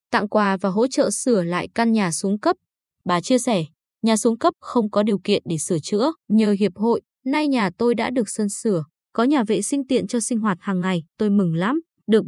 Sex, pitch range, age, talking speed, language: female, 195-250 Hz, 20-39, 235 wpm, Vietnamese